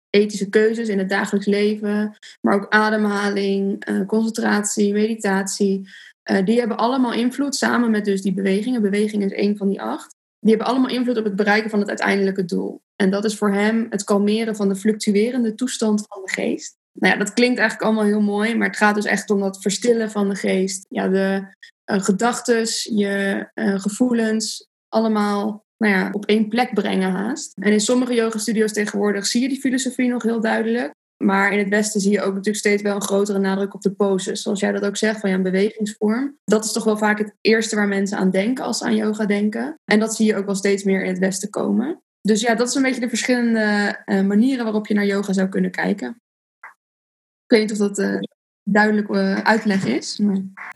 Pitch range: 200-225 Hz